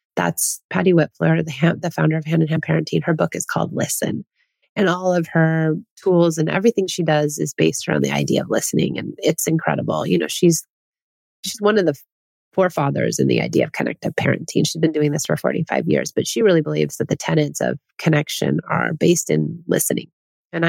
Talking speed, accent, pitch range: 205 wpm, American, 155-195 Hz